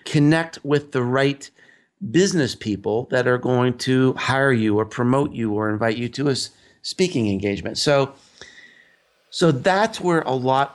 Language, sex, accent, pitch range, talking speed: English, male, American, 120-165 Hz, 155 wpm